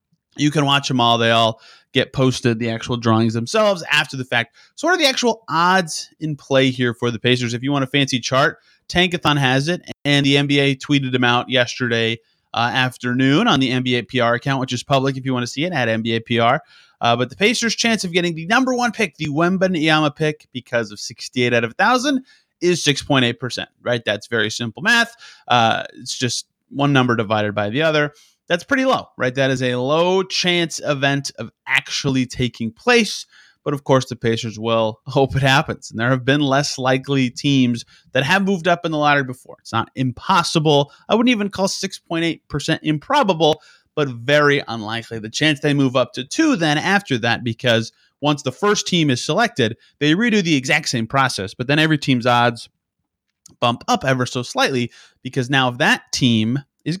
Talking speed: 200 wpm